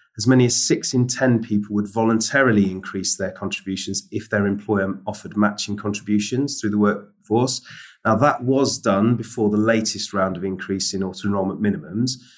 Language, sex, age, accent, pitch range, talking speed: English, male, 30-49, British, 100-115 Hz, 165 wpm